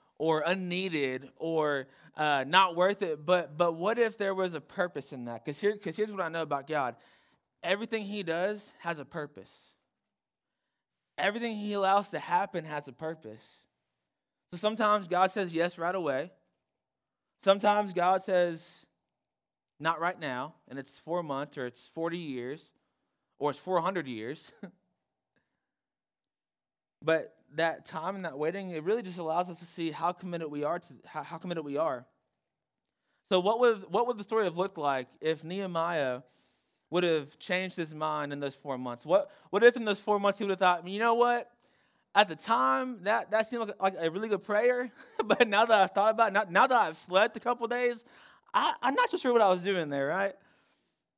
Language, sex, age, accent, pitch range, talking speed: English, male, 20-39, American, 155-205 Hz, 190 wpm